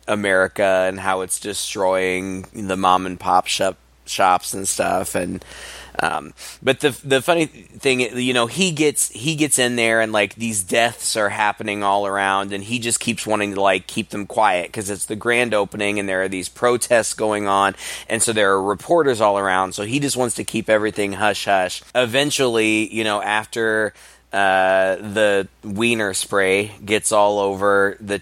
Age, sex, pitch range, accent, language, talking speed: 20-39, male, 95-120 Hz, American, English, 185 wpm